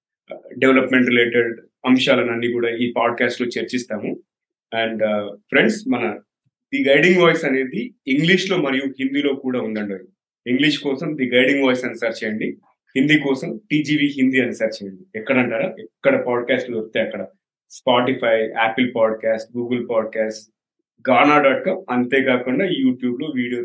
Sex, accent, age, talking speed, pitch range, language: male, native, 30-49, 135 wpm, 125-165 Hz, Telugu